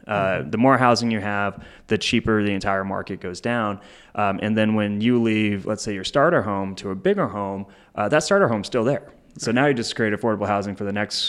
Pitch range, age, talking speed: 100-115 Hz, 20-39, 235 wpm